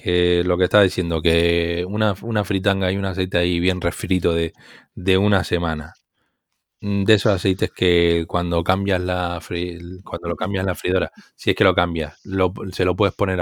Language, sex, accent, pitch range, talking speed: Spanish, male, Spanish, 85-105 Hz, 190 wpm